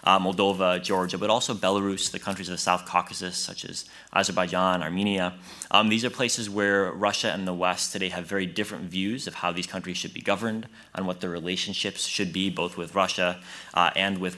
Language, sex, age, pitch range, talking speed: French, male, 20-39, 90-105 Hz, 205 wpm